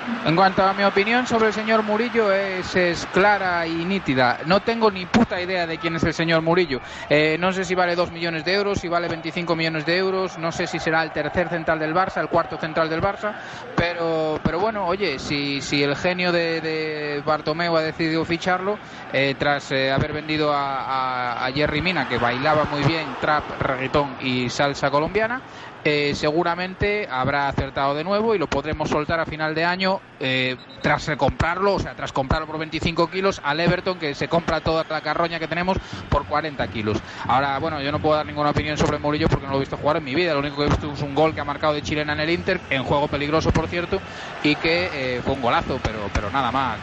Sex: male